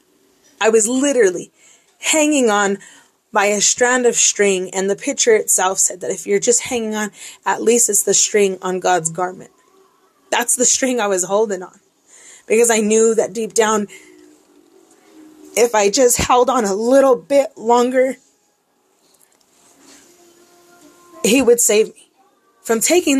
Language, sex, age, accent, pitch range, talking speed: English, female, 20-39, American, 185-255 Hz, 145 wpm